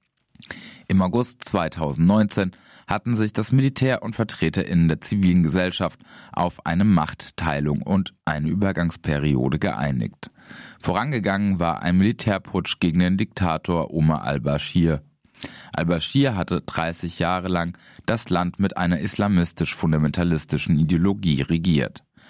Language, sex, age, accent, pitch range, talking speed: German, male, 30-49, German, 80-105 Hz, 110 wpm